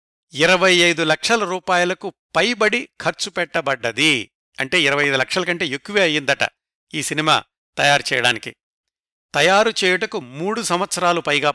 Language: Telugu